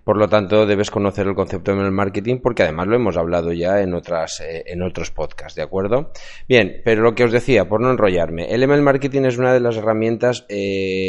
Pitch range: 90-110 Hz